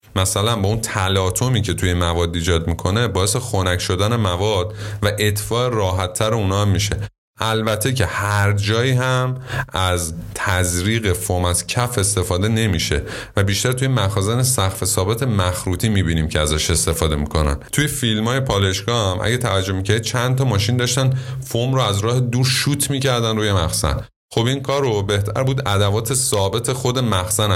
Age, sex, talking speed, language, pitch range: 30-49, male, 160 wpm, Persian, 95-125 Hz